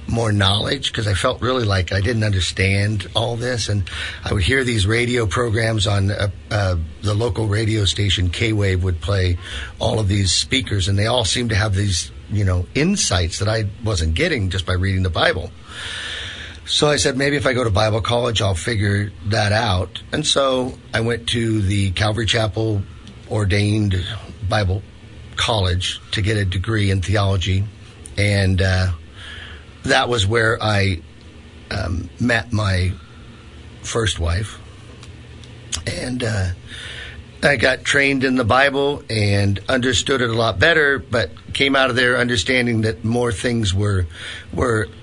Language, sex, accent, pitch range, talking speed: English, male, American, 95-120 Hz, 160 wpm